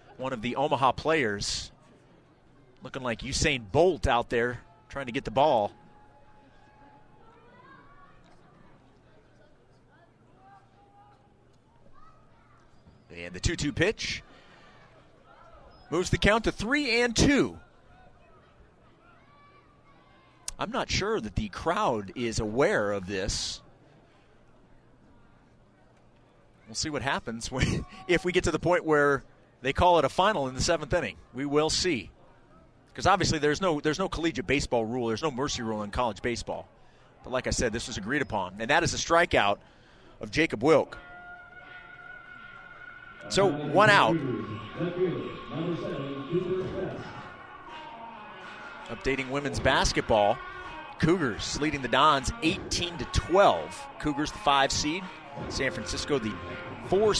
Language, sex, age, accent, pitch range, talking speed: English, male, 30-49, American, 120-170 Hz, 120 wpm